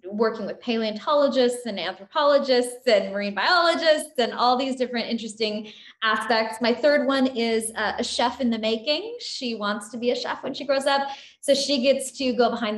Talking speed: 185 wpm